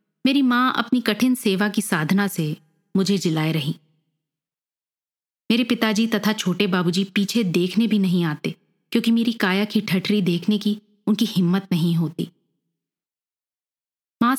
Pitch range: 170-215 Hz